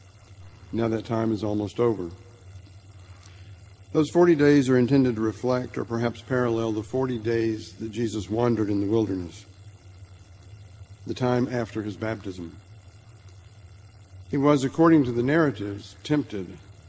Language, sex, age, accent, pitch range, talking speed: English, male, 60-79, American, 100-120 Hz, 130 wpm